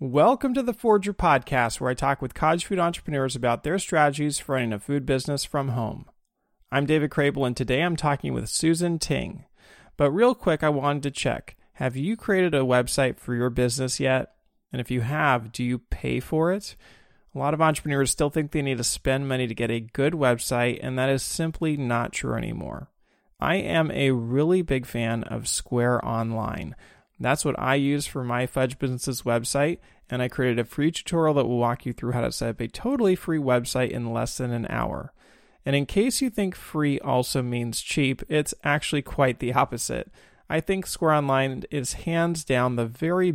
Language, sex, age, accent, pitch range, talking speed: English, male, 30-49, American, 125-155 Hz, 200 wpm